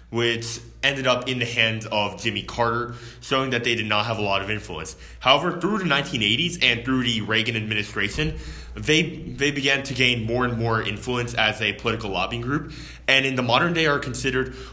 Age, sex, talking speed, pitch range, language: 20-39, male, 200 wpm, 105-125 Hz, English